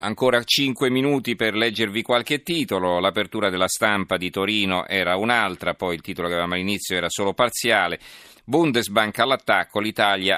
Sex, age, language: male, 40-59, Italian